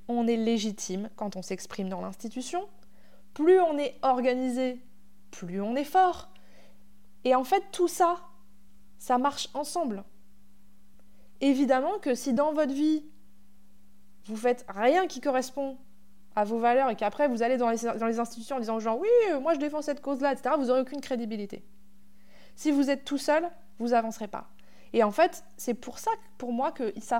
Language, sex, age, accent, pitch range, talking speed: French, female, 20-39, French, 210-275 Hz, 175 wpm